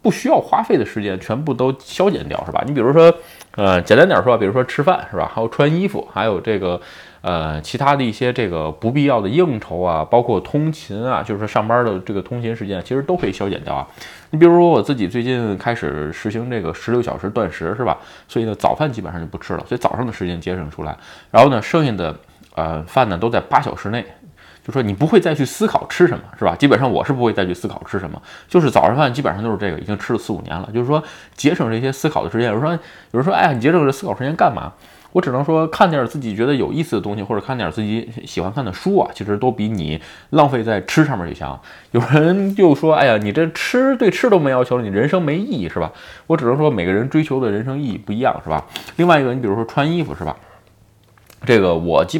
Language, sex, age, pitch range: Chinese, male, 20-39, 100-150 Hz